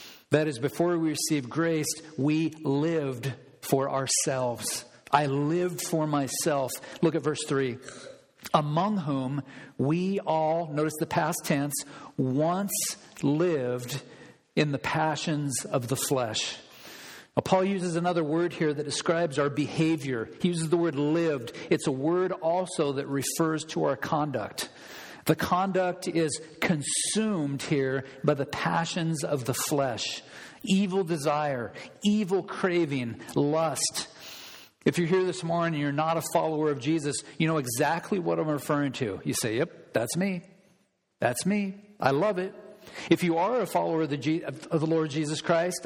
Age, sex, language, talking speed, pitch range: 50-69, male, English, 150 wpm, 145-175 Hz